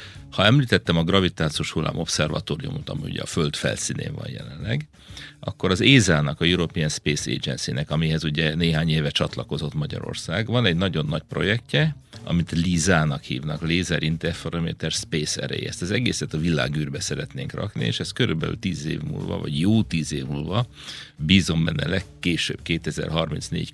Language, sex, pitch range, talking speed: Hungarian, male, 80-105 Hz, 155 wpm